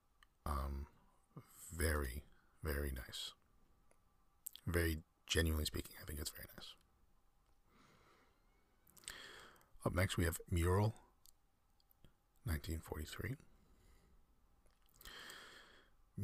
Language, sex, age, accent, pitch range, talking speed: English, male, 40-59, American, 75-85 Hz, 70 wpm